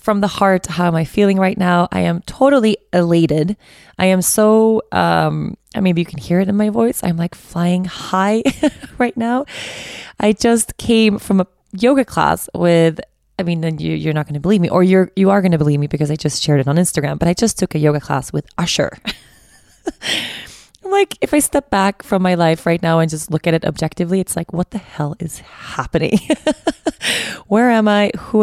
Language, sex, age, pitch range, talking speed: English, female, 20-39, 160-210 Hz, 205 wpm